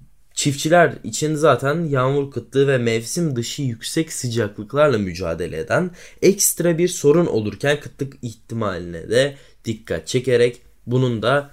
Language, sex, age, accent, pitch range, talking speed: Turkish, male, 10-29, native, 100-135 Hz, 120 wpm